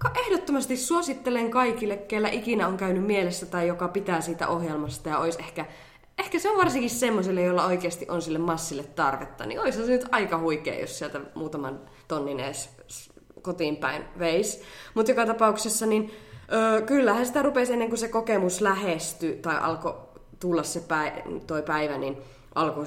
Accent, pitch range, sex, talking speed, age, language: native, 160-220 Hz, female, 165 wpm, 20-39, Finnish